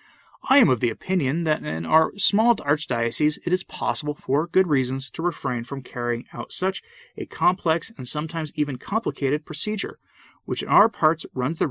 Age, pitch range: 30-49, 125-180 Hz